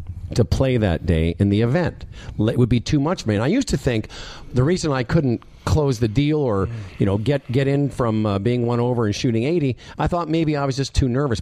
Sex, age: male, 50-69